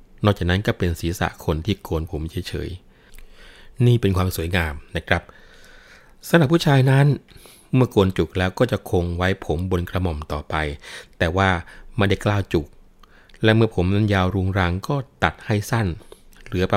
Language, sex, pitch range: Thai, male, 85-105 Hz